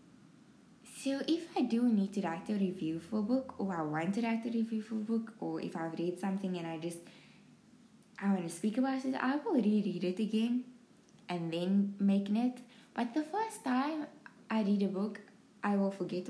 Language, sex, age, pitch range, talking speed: English, female, 10-29, 190-240 Hz, 205 wpm